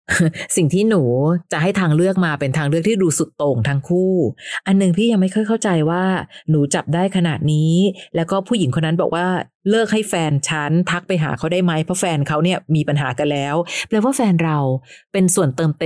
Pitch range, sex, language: 150-190 Hz, female, Thai